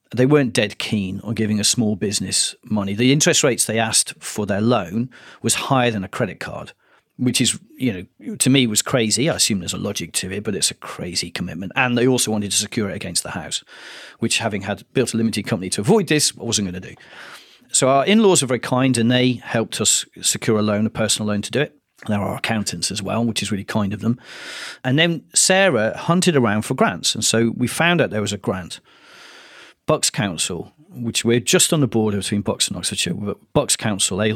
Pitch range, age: 105-130 Hz, 40-59